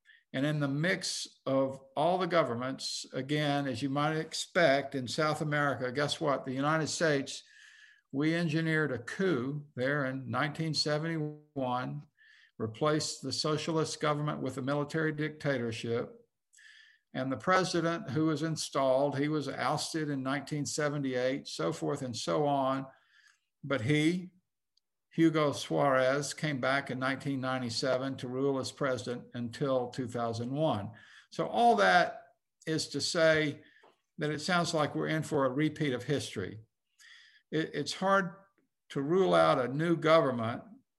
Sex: male